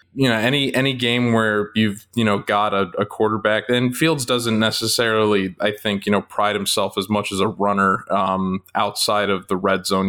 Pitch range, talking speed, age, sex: 100-115 Hz, 200 wpm, 20-39, male